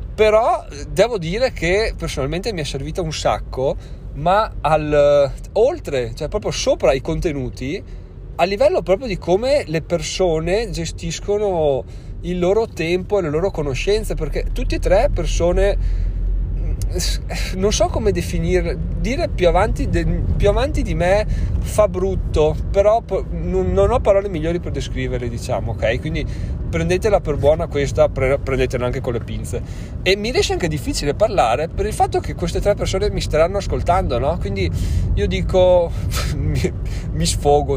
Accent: native